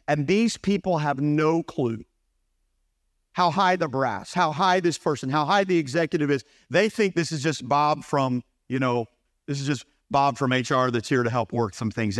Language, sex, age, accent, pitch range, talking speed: English, male, 50-69, American, 130-210 Hz, 200 wpm